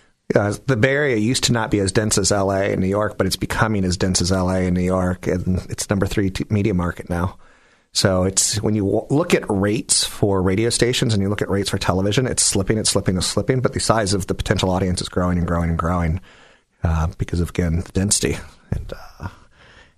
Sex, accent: male, American